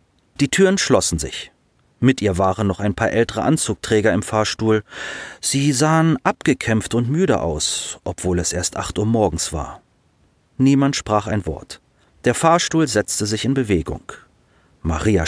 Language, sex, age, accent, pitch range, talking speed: German, male, 40-59, German, 90-135 Hz, 150 wpm